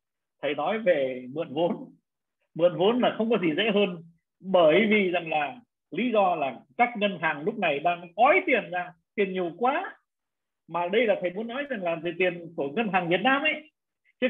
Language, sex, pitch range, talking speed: Vietnamese, male, 180-270 Hz, 200 wpm